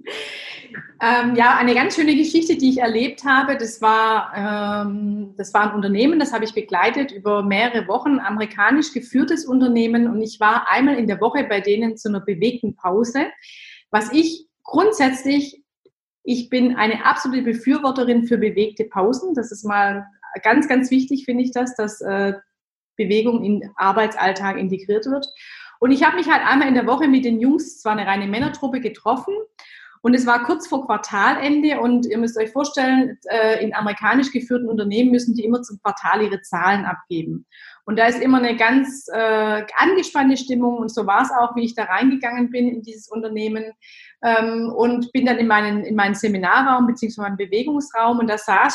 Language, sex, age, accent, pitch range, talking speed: German, female, 30-49, German, 215-265 Hz, 175 wpm